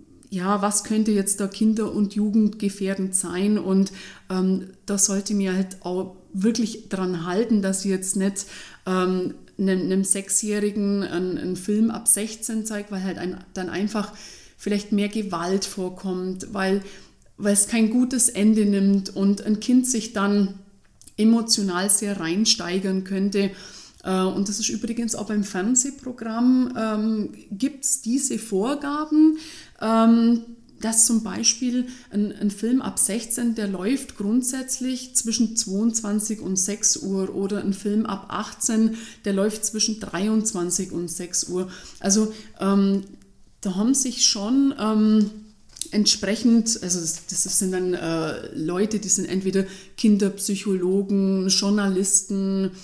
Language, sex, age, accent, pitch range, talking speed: German, female, 30-49, German, 190-220 Hz, 135 wpm